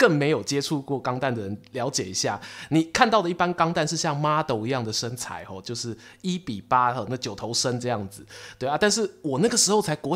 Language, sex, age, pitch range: Chinese, male, 20-39, 120-170 Hz